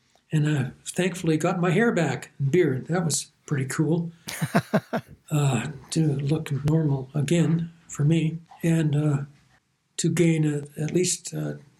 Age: 60-79